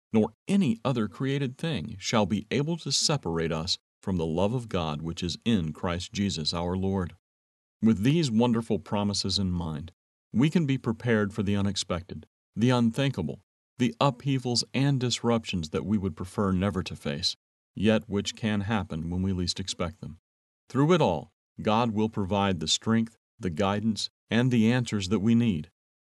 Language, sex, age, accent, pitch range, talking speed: English, male, 40-59, American, 90-115 Hz, 170 wpm